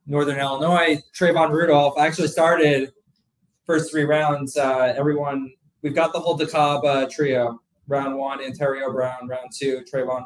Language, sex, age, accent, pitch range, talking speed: English, male, 20-39, American, 120-145 Hz, 145 wpm